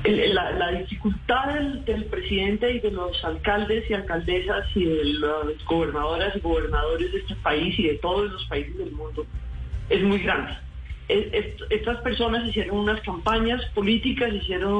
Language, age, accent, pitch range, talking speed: Spanish, 40-59, Colombian, 165-230 Hz, 155 wpm